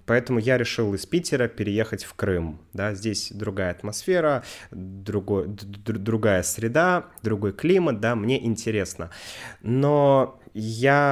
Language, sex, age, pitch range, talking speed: Russian, male, 20-39, 100-130 Hz, 115 wpm